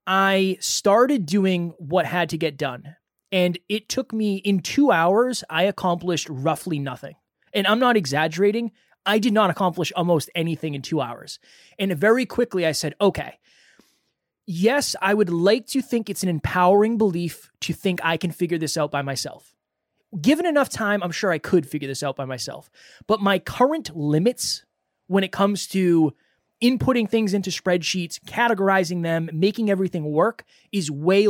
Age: 20-39